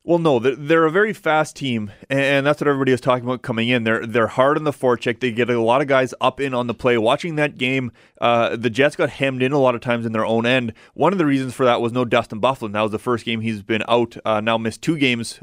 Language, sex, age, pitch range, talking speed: English, male, 30-49, 115-135 Hz, 285 wpm